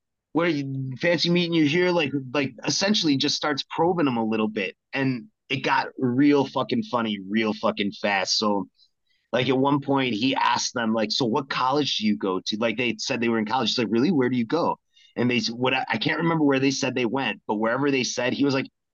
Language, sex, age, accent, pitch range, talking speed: English, male, 30-49, American, 120-175 Hz, 230 wpm